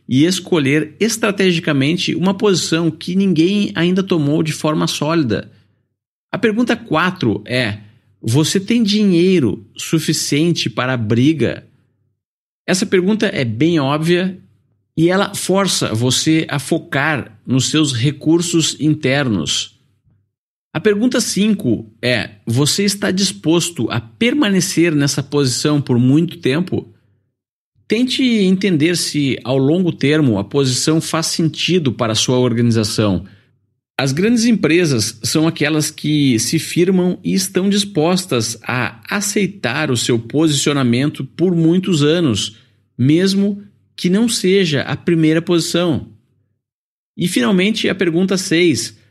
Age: 50-69